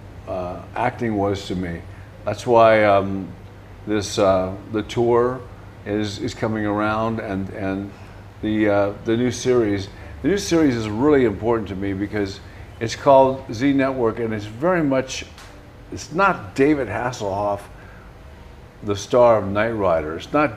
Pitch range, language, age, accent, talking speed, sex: 100-125 Hz, German, 50-69, American, 150 wpm, male